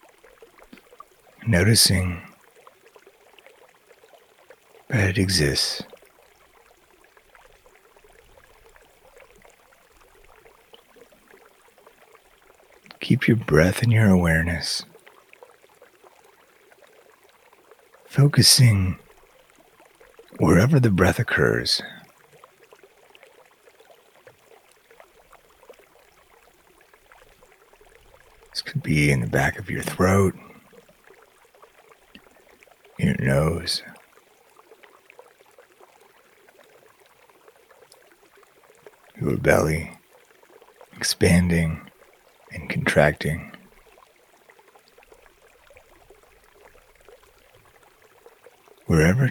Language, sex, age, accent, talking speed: English, male, 60-79, American, 40 wpm